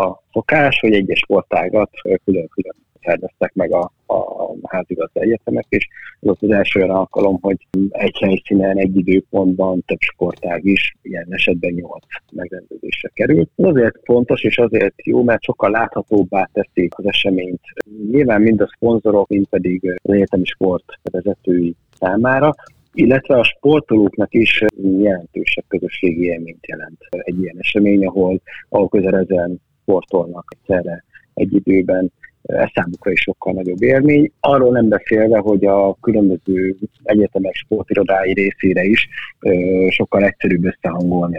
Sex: male